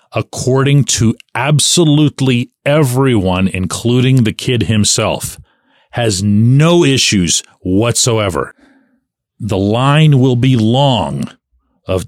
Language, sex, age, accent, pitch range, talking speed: English, male, 40-59, American, 100-135 Hz, 90 wpm